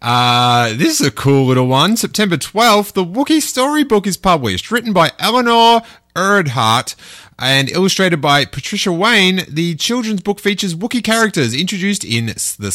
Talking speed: 150 wpm